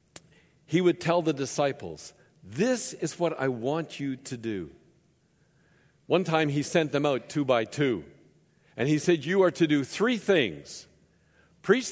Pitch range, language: 120-165 Hz, English